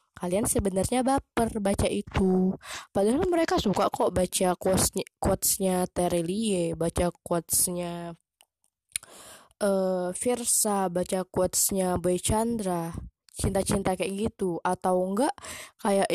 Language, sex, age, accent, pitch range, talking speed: Indonesian, female, 20-39, native, 180-235 Hz, 100 wpm